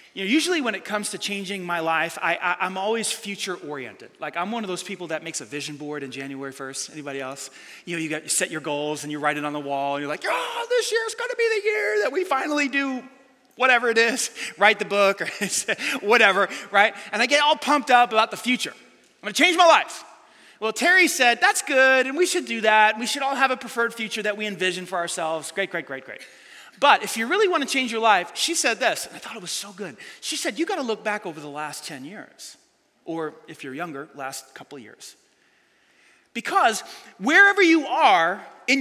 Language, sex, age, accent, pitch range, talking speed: English, male, 30-49, American, 190-290 Hz, 240 wpm